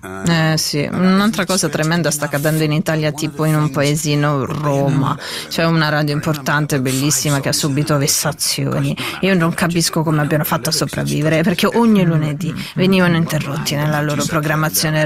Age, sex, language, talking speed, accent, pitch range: 30-49, female, Italian, 155 wpm, native, 155-195 Hz